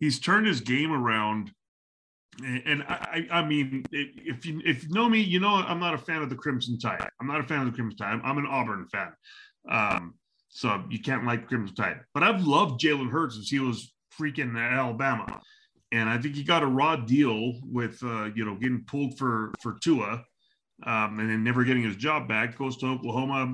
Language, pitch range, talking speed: English, 115-155 Hz, 210 wpm